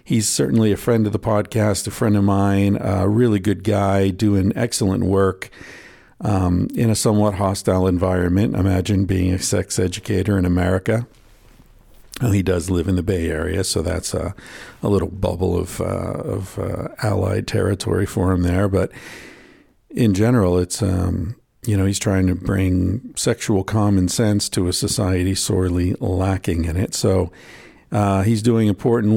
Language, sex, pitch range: English, male, 95-110 Hz